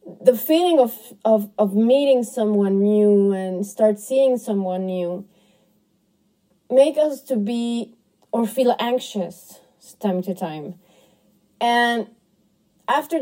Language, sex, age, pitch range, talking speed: English, female, 30-49, 195-240 Hz, 115 wpm